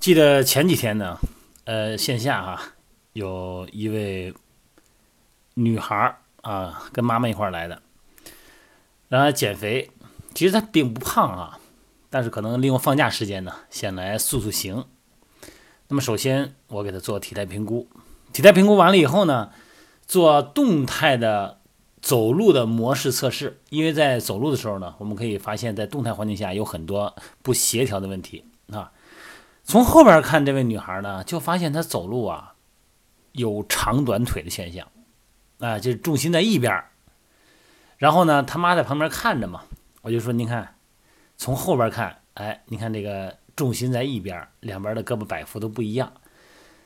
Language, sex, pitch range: Chinese, male, 105-145 Hz